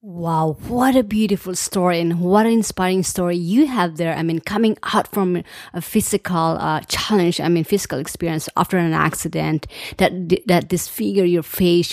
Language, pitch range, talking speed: English, 165-205 Hz, 170 wpm